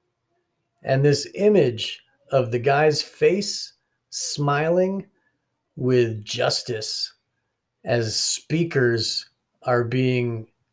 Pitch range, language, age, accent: 115-155 Hz, English, 40-59, American